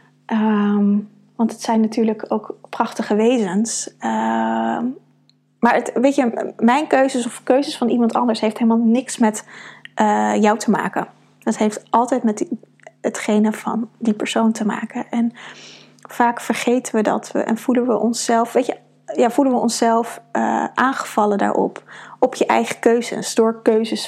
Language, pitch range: Dutch, 215-235 Hz